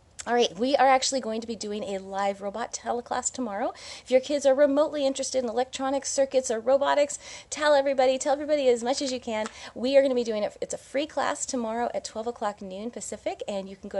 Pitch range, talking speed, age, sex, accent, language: 195-260 Hz, 235 wpm, 30-49, female, American, English